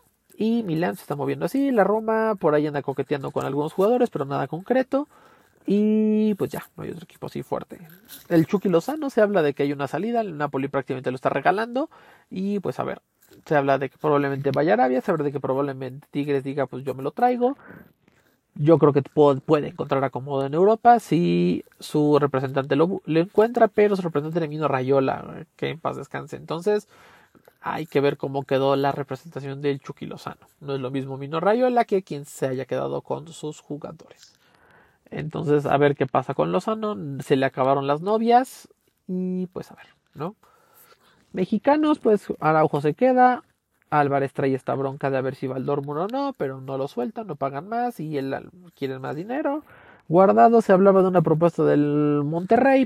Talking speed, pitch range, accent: 190 wpm, 140-215 Hz, Mexican